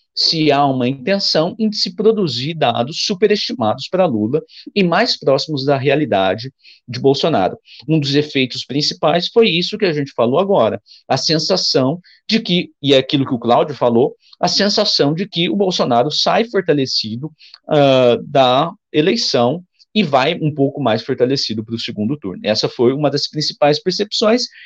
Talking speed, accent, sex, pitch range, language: 160 wpm, Brazilian, male, 125-185 Hz, Portuguese